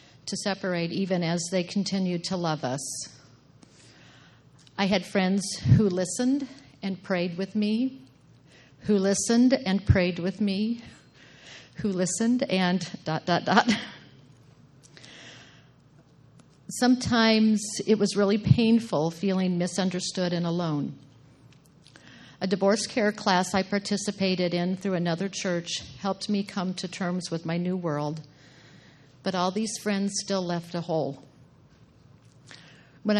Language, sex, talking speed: English, female, 120 wpm